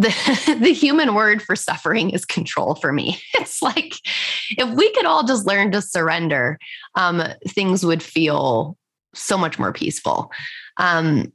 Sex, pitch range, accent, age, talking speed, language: female, 165-210 Hz, American, 20-39, 155 wpm, English